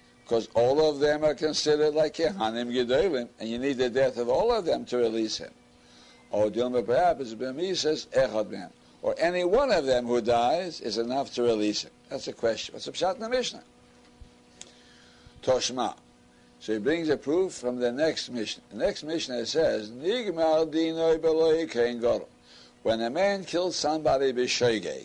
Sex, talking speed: male, 135 wpm